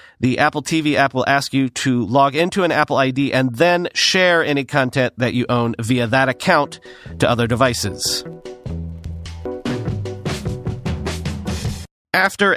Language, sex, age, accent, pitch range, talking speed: English, male, 40-59, American, 125-180 Hz, 135 wpm